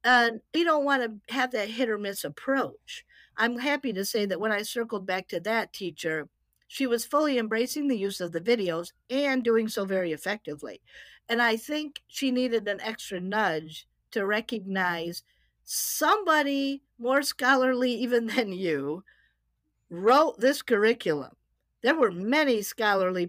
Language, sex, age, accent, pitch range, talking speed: English, female, 50-69, American, 185-270 Hz, 155 wpm